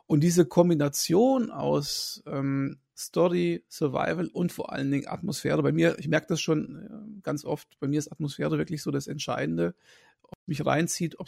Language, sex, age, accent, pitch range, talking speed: German, male, 40-59, German, 155-185 Hz, 180 wpm